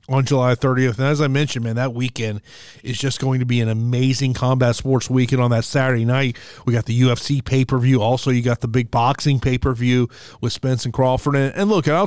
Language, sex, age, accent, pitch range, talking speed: English, male, 30-49, American, 125-155 Hz, 215 wpm